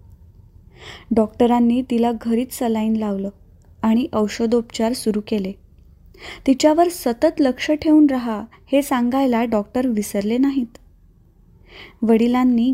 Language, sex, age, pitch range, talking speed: Marathi, female, 20-39, 215-255 Hz, 95 wpm